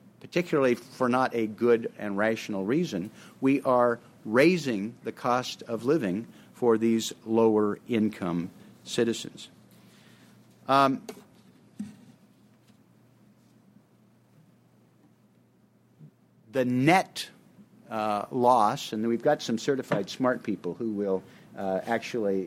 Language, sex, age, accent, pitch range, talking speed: English, male, 50-69, American, 105-130 Hz, 95 wpm